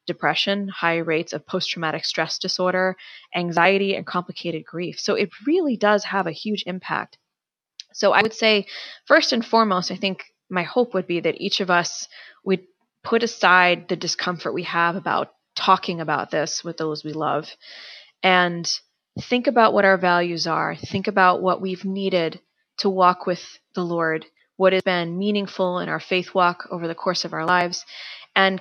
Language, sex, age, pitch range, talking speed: English, female, 20-39, 175-205 Hz, 175 wpm